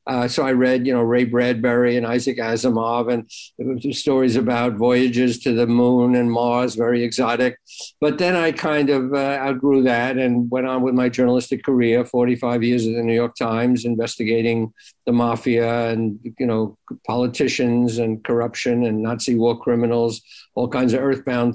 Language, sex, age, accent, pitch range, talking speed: English, male, 60-79, American, 120-145 Hz, 175 wpm